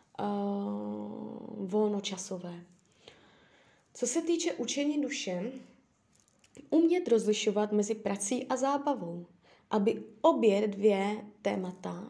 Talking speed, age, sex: 85 wpm, 20-39, female